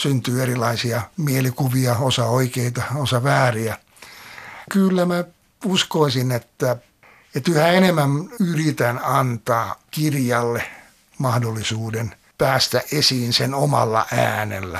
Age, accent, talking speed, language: 60-79, native, 95 wpm, Finnish